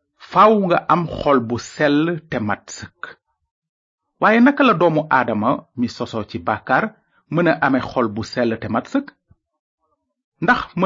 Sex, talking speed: male, 135 wpm